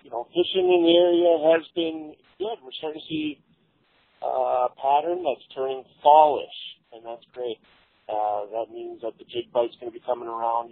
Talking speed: 190 wpm